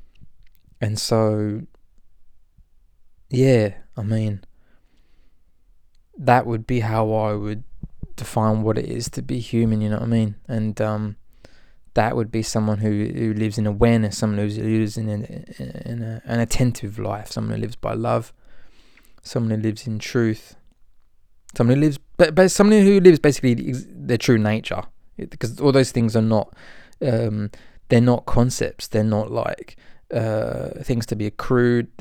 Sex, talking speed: male, 165 wpm